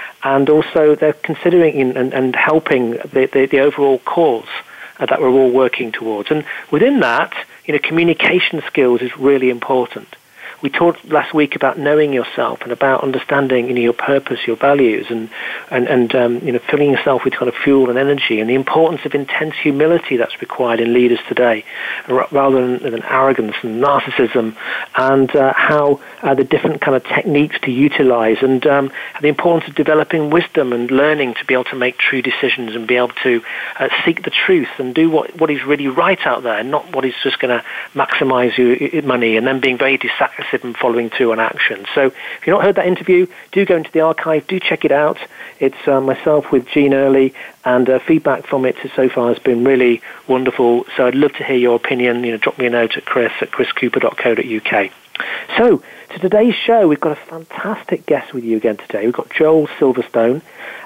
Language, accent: English, British